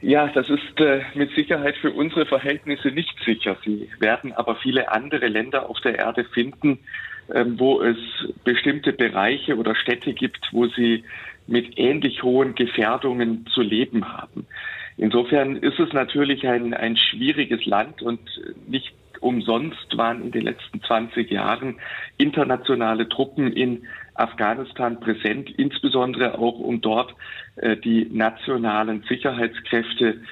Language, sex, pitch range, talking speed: German, male, 115-140 Hz, 130 wpm